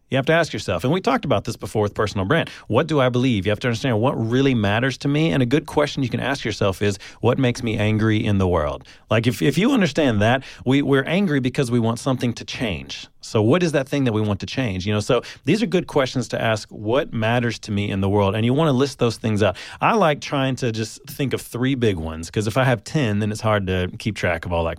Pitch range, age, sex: 105-140 Hz, 30-49, male